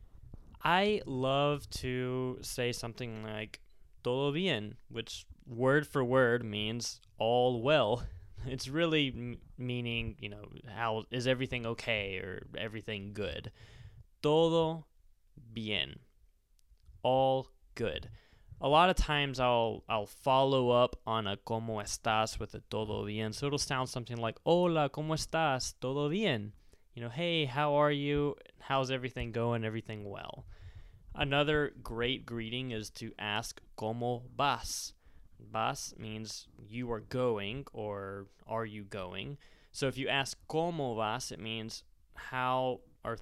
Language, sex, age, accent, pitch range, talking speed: English, male, 20-39, American, 110-135 Hz, 135 wpm